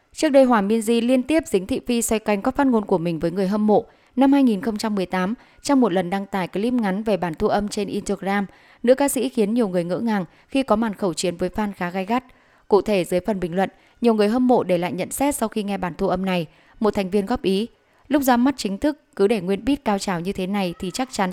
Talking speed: 275 wpm